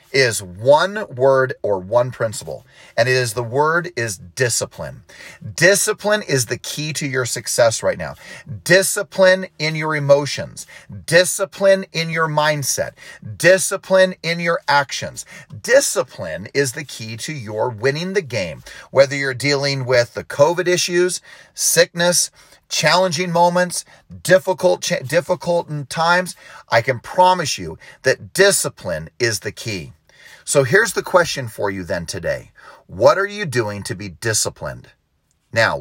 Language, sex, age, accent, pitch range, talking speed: English, male, 40-59, American, 120-170 Hz, 135 wpm